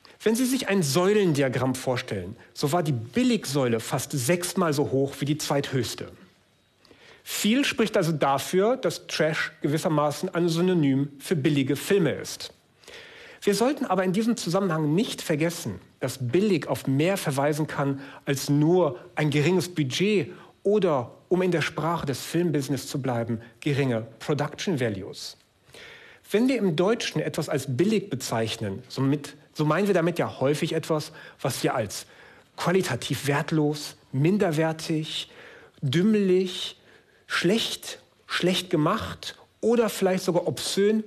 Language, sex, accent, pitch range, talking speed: German, male, German, 140-185 Hz, 135 wpm